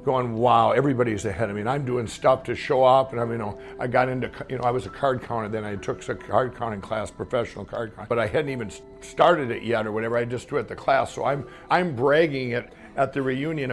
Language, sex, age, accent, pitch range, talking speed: English, male, 60-79, American, 110-140 Hz, 260 wpm